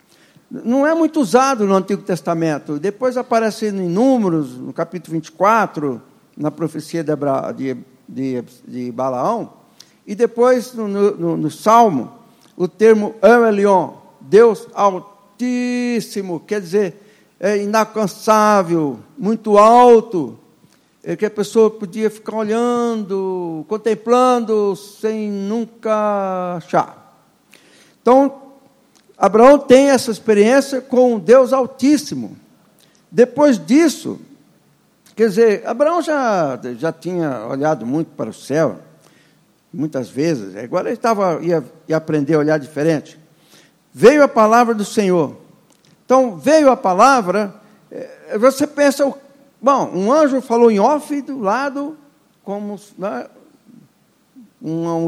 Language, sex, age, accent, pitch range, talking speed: Portuguese, male, 60-79, Brazilian, 170-250 Hz, 110 wpm